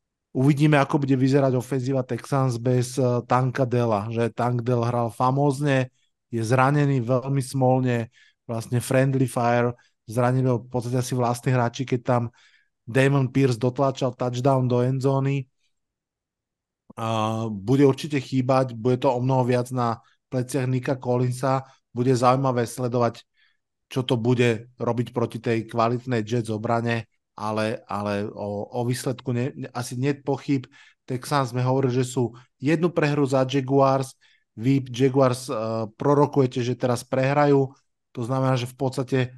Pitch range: 120-135 Hz